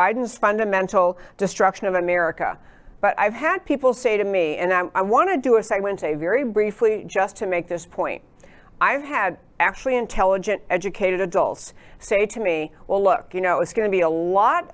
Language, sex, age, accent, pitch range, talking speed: English, female, 50-69, American, 175-210 Hz, 190 wpm